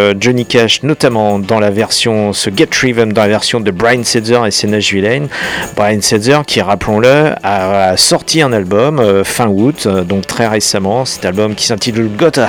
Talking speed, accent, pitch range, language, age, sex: 185 wpm, French, 100-120 Hz, French, 40-59, male